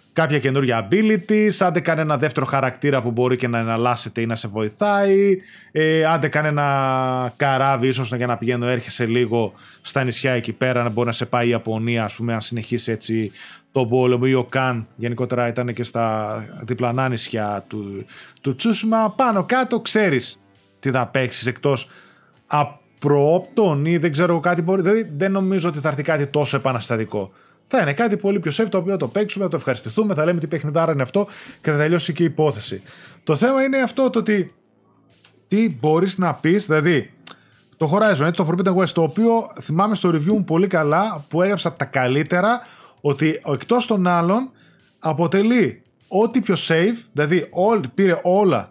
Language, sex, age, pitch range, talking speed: Greek, male, 20-39, 125-195 Hz, 175 wpm